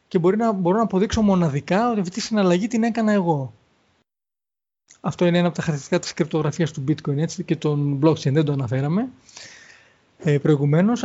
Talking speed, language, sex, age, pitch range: 175 wpm, Greek, male, 20-39, 165-220 Hz